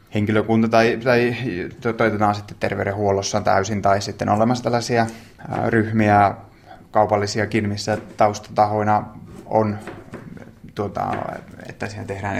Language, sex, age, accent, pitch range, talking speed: Finnish, male, 20-39, native, 105-115 Hz, 100 wpm